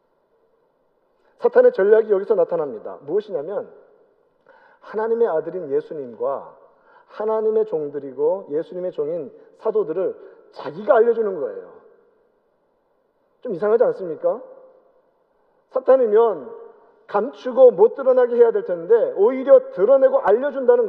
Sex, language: male, Korean